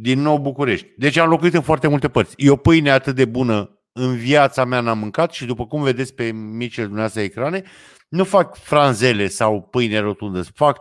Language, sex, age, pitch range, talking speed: Romanian, male, 50-69, 110-150 Hz, 195 wpm